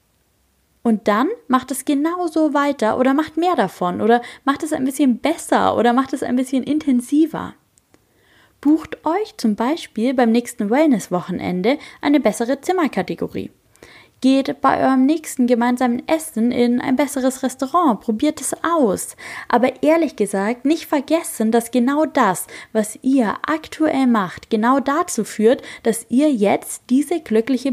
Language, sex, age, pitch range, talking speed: German, female, 20-39, 215-285 Hz, 140 wpm